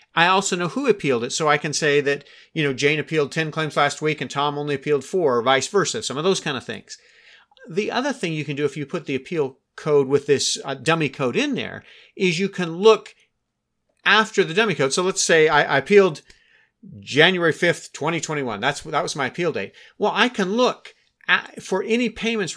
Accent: American